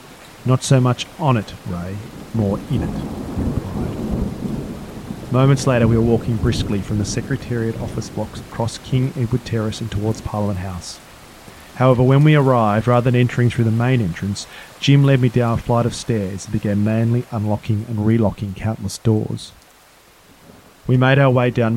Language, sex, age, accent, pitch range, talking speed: English, male, 30-49, Australian, 95-120 Hz, 170 wpm